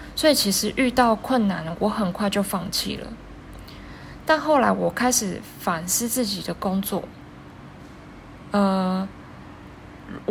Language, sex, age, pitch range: Chinese, female, 20-39, 190-245 Hz